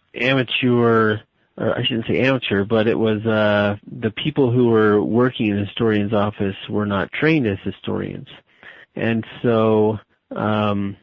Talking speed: 145 wpm